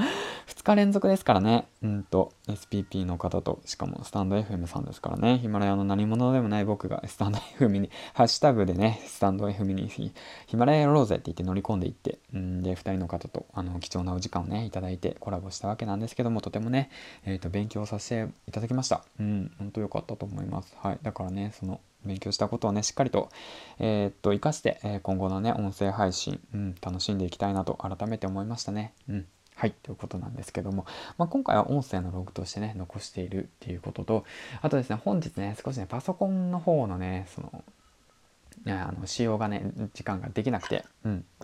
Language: Japanese